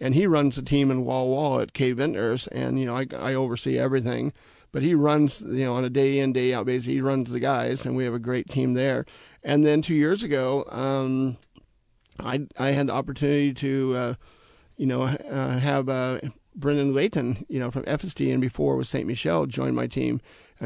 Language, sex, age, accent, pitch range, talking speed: English, male, 40-59, American, 125-140 Hz, 215 wpm